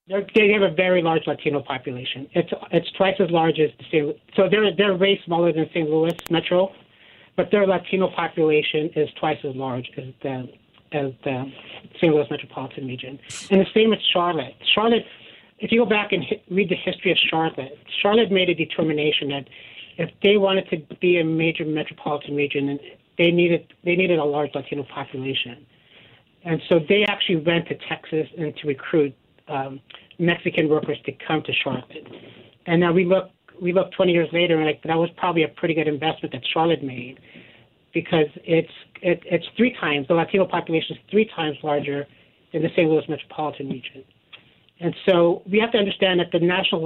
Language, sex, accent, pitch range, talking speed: English, male, American, 145-185 Hz, 185 wpm